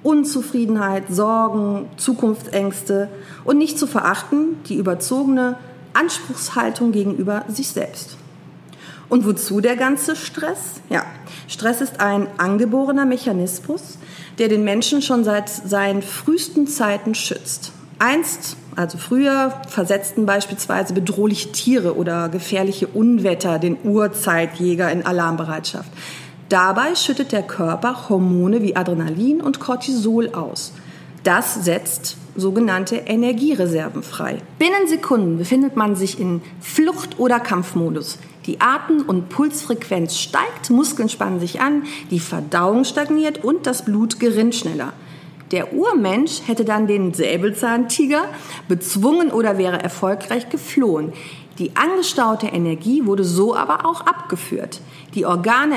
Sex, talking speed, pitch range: female, 115 wpm, 180-255 Hz